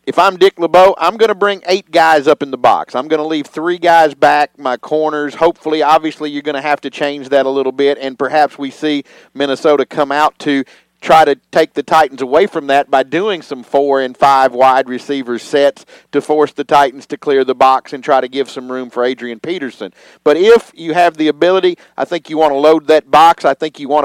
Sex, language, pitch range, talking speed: male, English, 140-170 Hz, 235 wpm